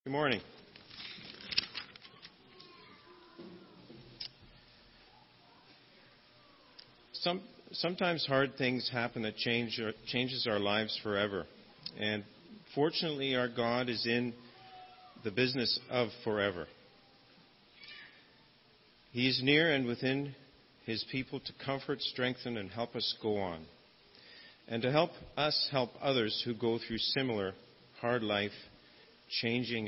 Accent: American